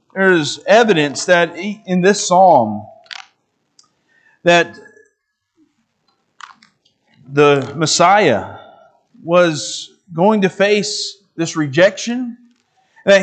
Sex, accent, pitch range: male, American, 190-230 Hz